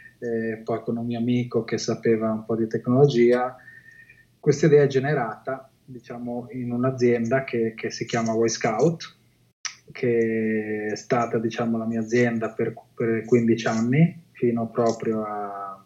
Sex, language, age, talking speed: male, Italian, 20-39, 150 wpm